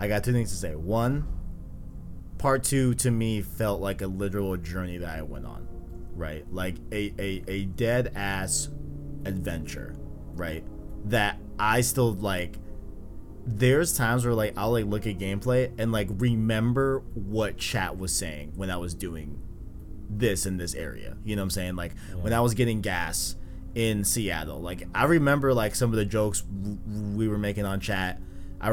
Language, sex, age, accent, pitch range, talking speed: English, male, 20-39, American, 90-120 Hz, 175 wpm